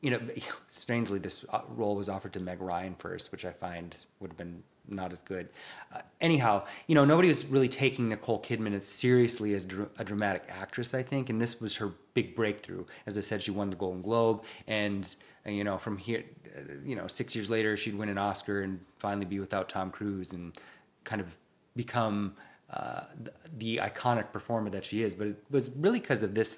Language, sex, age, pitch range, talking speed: English, male, 30-49, 100-120 Hz, 205 wpm